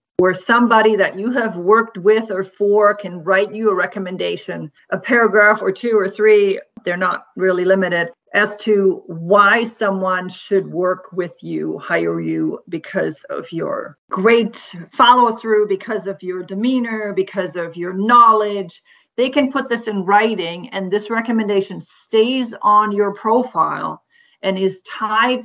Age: 50-69